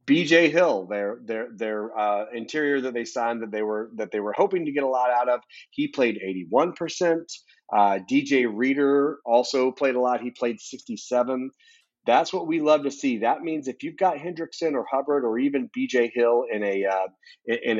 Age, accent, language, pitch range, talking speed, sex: 30-49, American, English, 115-155 Hz, 200 wpm, male